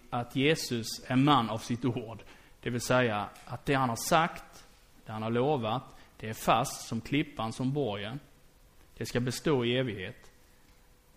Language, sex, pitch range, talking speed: Swedish, male, 110-145 Hz, 165 wpm